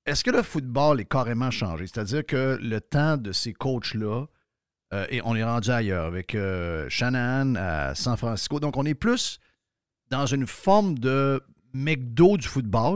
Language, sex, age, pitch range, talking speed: French, male, 50-69, 105-150 Hz, 170 wpm